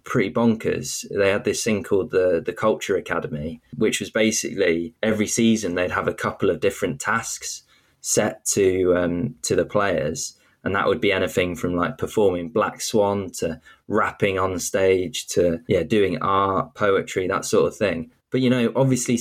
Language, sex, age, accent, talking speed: English, male, 20-39, British, 175 wpm